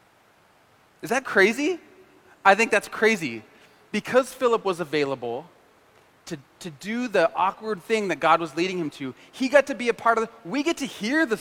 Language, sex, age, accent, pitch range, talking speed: English, male, 30-49, American, 160-230 Hz, 190 wpm